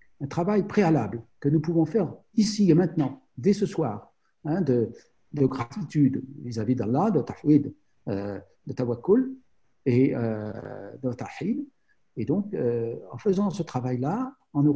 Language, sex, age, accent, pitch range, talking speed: French, male, 60-79, French, 115-155 Hz, 155 wpm